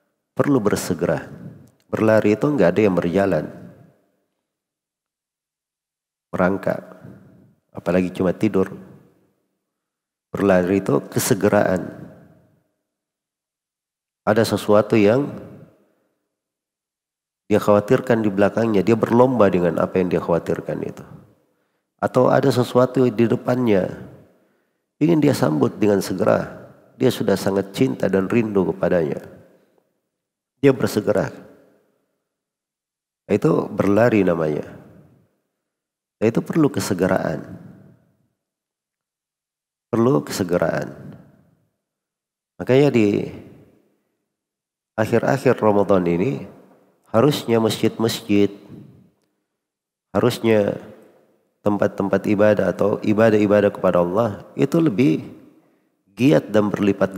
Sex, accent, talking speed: male, native, 80 wpm